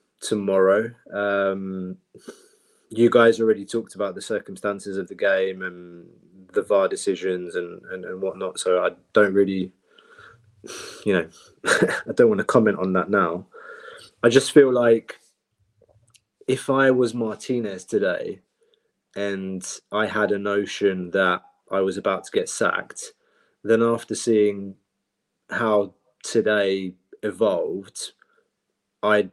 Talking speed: 125 wpm